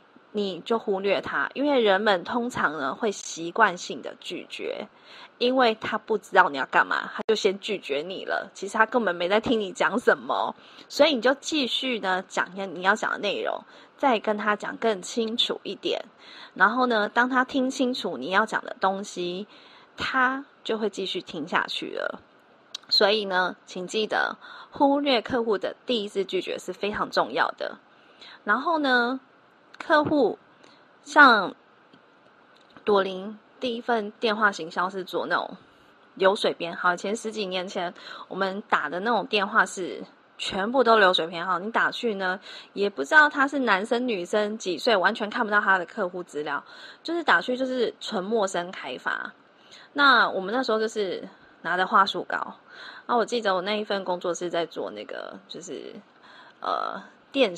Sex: female